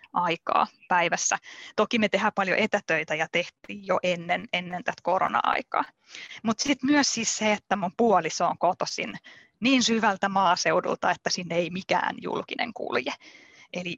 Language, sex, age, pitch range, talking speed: Finnish, female, 20-39, 170-215 Hz, 145 wpm